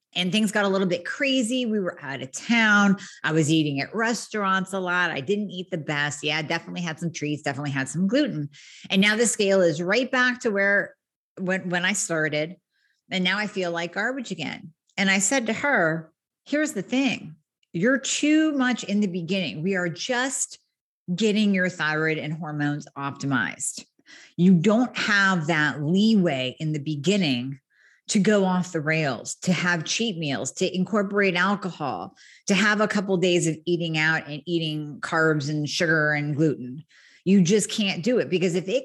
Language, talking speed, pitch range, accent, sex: English, 185 wpm, 160-215 Hz, American, female